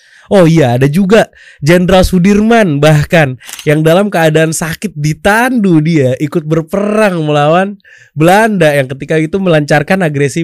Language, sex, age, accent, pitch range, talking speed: Indonesian, male, 20-39, native, 115-155 Hz, 125 wpm